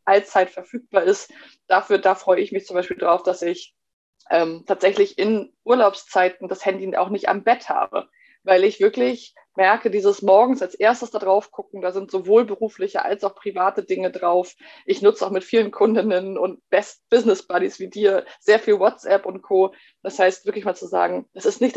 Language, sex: German, female